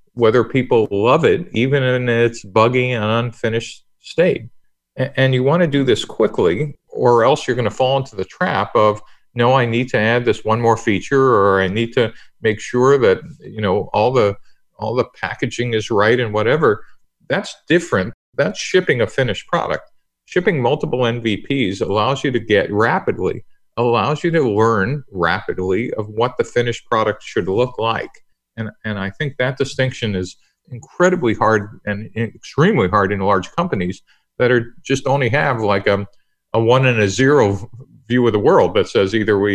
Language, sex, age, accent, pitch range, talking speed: English, male, 50-69, American, 105-130 Hz, 180 wpm